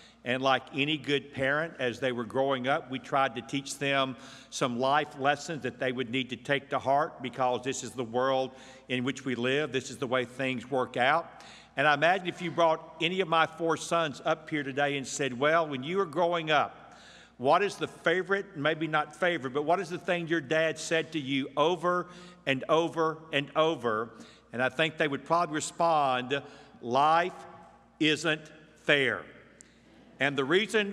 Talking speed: 190 wpm